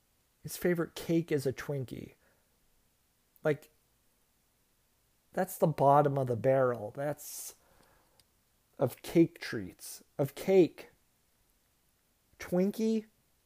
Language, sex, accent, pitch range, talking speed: English, male, American, 135-175 Hz, 90 wpm